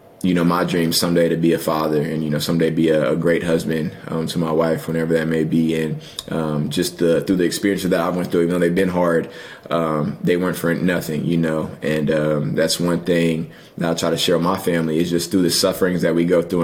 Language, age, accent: English, 20-39, American